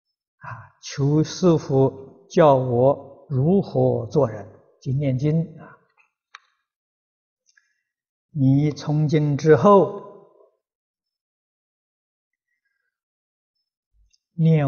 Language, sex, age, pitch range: Chinese, male, 60-79, 135-200 Hz